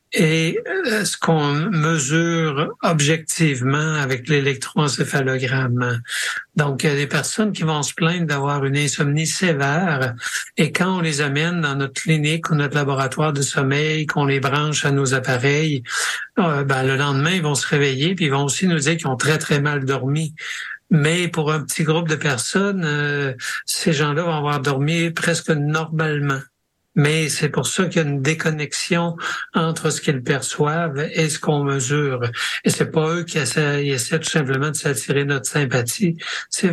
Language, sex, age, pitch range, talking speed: French, male, 60-79, 140-160 Hz, 175 wpm